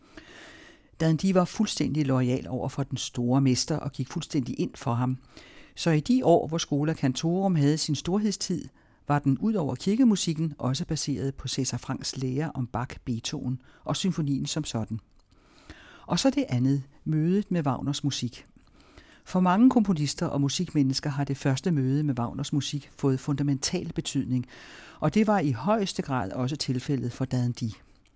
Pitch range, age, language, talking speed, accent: 130-170 Hz, 60-79, Danish, 160 wpm, native